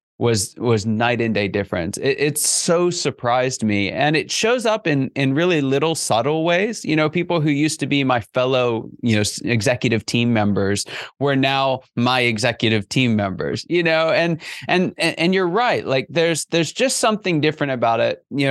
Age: 20-39